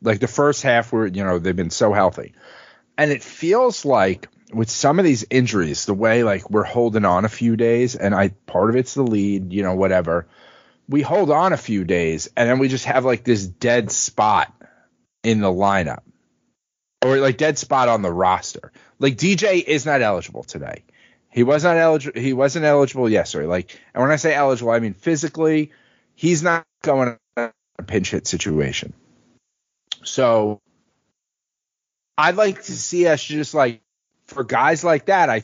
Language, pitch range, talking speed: English, 110-155 Hz, 180 wpm